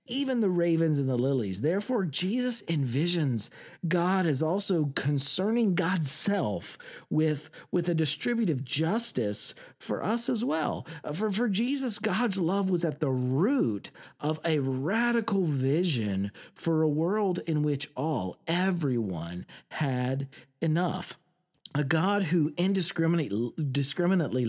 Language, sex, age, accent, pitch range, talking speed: English, male, 50-69, American, 130-195 Hz, 125 wpm